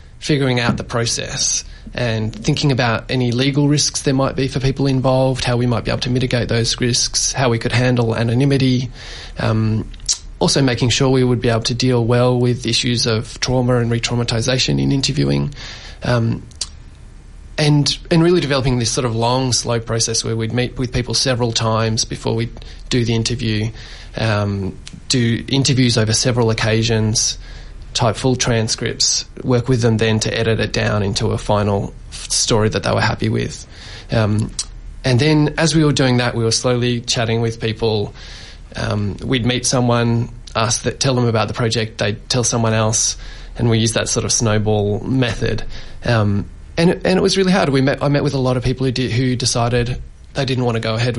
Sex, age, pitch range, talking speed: male, 20-39, 110-130 Hz, 190 wpm